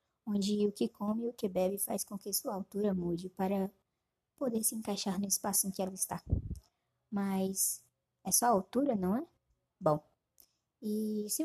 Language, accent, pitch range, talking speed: Portuguese, Brazilian, 180-230 Hz, 180 wpm